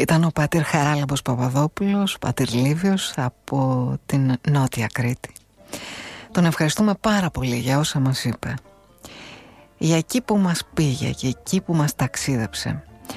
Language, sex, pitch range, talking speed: Greek, female, 130-180 Hz, 130 wpm